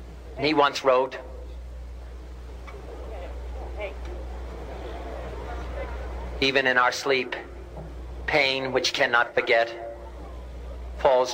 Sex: male